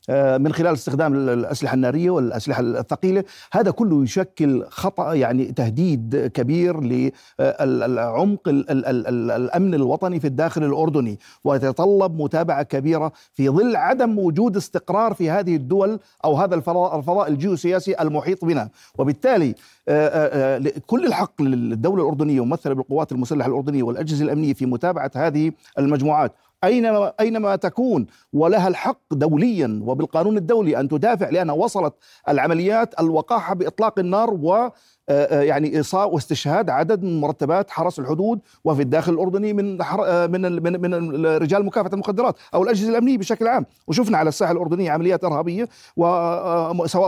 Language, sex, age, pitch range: Arabic, male, 50-69, 140-190 Hz